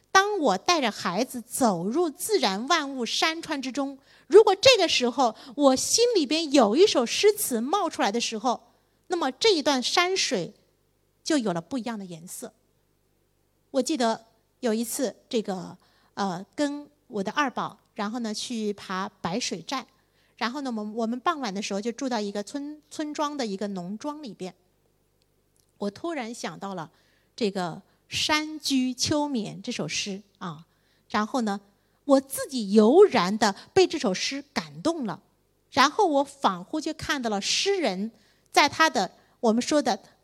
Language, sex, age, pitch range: Chinese, female, 50-69, 210-305 Hz